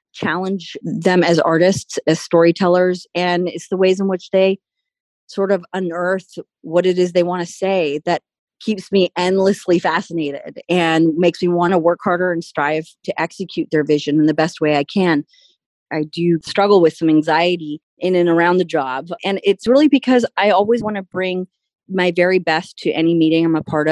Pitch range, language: 160-190 Hz, English